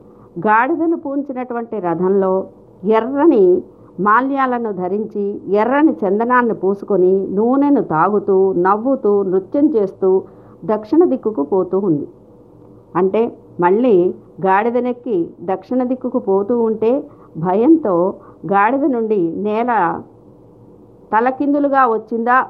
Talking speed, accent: 85 wpm, native